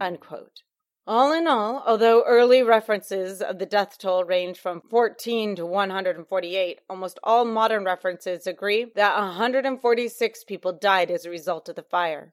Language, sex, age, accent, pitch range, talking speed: English, female, 30-49, American, 185-235 Hz, 150 wpm